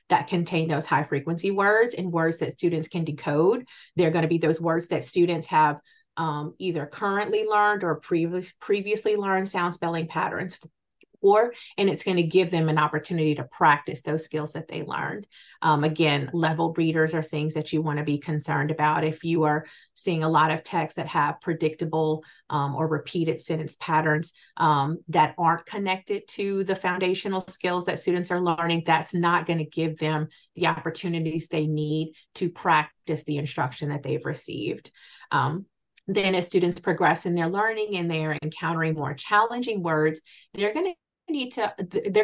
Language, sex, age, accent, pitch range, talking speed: English, female, 30-49, American, 155-185 Hz, 180 wpm